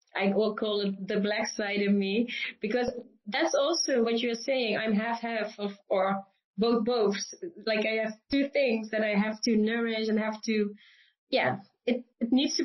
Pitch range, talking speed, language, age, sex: 215-255 Hz, 190 wpm, English, 20-39, female